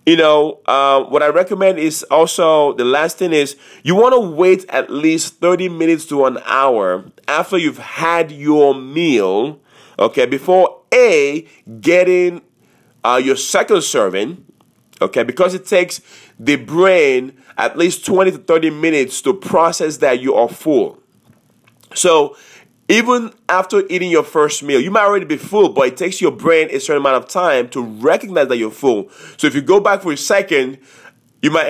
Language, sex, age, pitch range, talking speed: English, male, 30-49, 145-200 Hz, 170 wpm